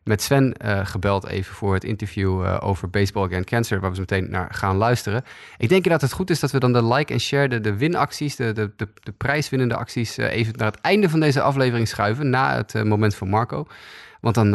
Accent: Dutch